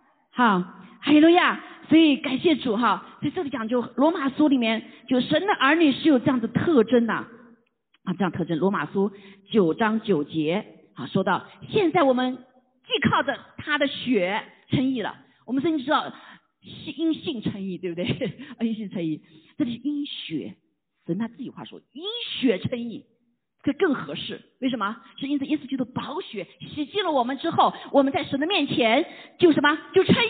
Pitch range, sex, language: 215-305 Hz, female, Chinese